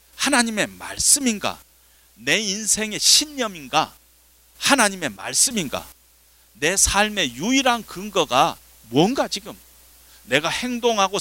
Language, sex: Korean, male